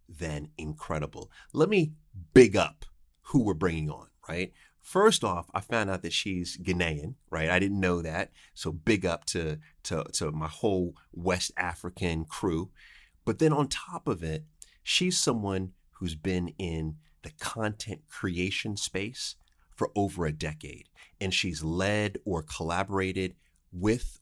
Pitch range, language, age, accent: 80-105 Hz, English, 30-49, American